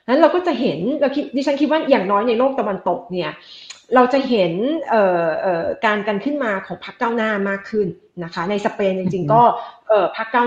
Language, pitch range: Thai, 190-255 Hz